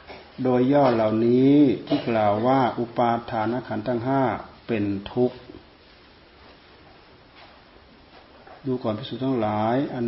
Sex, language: male, Thai